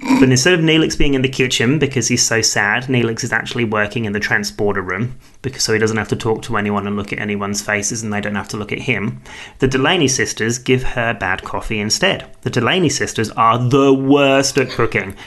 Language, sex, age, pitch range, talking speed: English, male, 30-49, 105-135 Hz, 230 wpm